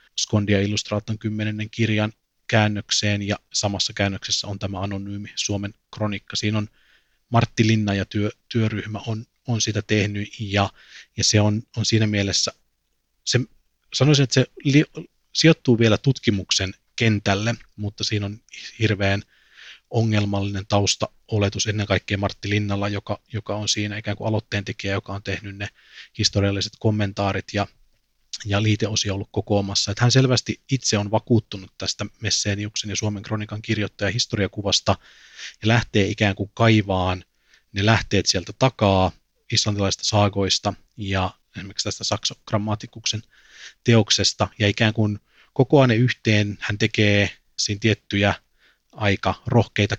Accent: native